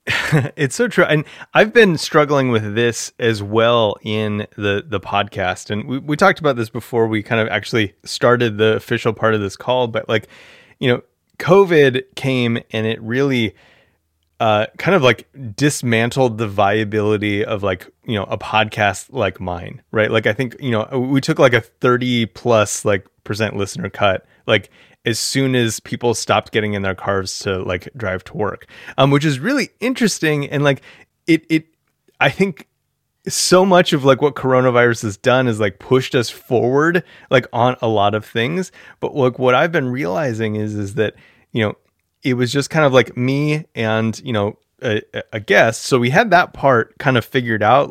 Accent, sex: American, male